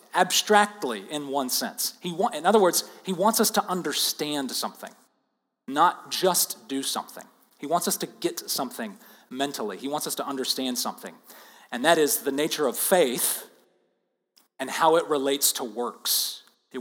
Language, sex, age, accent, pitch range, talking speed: English, male, 40-59, American, 145-200 Hz, 165 wpm